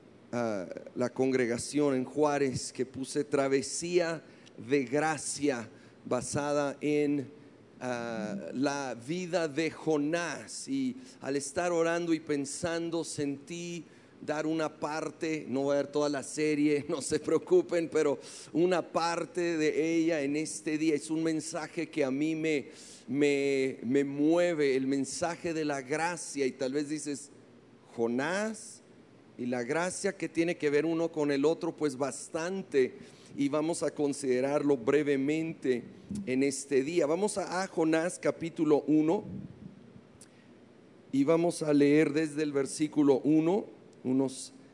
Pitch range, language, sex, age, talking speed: 140-165 Hz, Spanish, male, 40-59, 130 wpm